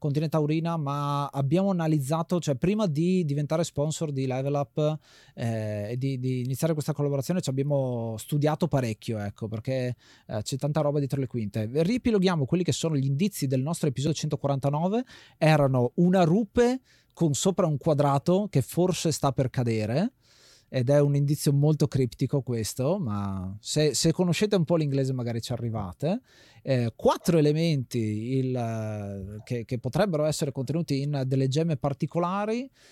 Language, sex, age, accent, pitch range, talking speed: Italian, male, 30-49, native, 130-165 Hz, 155 wpm